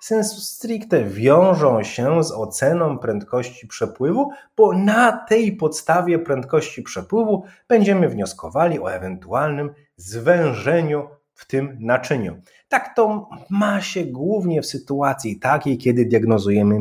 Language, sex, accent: Polish, male, native